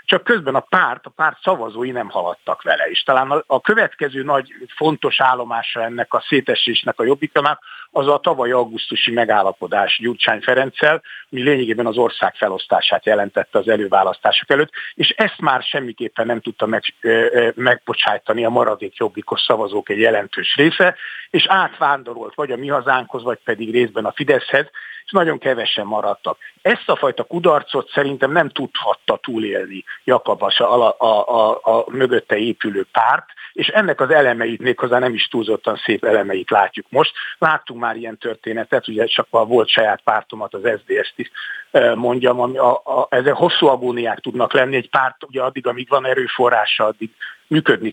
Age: 50-69